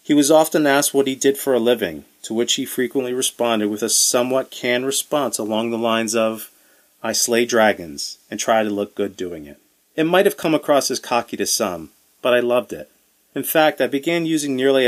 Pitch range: 105-140 Hz